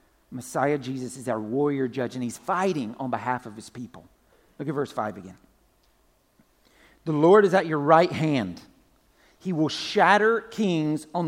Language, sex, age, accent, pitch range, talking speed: English, male, 50-69, American, 140-190 Hz, 165 wpm